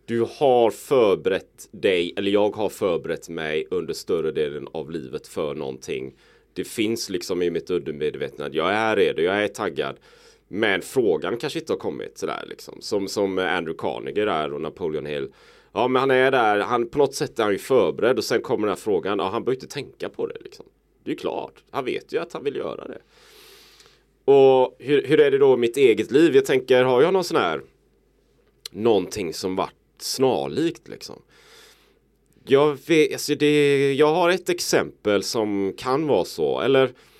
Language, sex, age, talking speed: Swedish, male, 30-49, 190 wpm